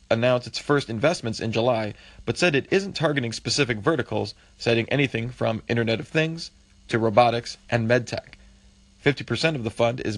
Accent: American